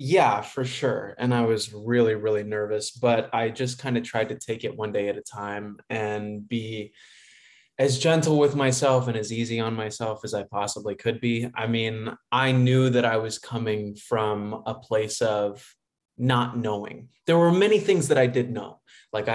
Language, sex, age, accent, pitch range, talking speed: English, male, 20-39, American, 110-135 Hz, 190 wpm